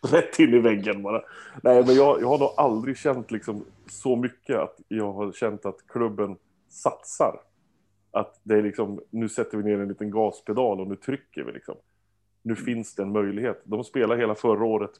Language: Swedish